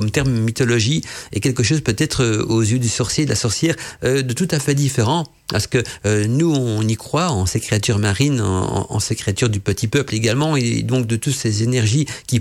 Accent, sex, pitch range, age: French, male, 105-130 Hz, 50-69